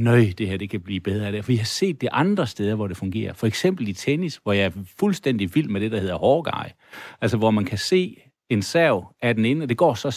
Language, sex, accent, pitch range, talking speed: Danish, male, native, 110-150 Hz, 260 wpm